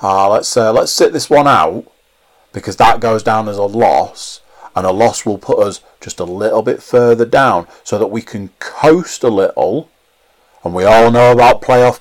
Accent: British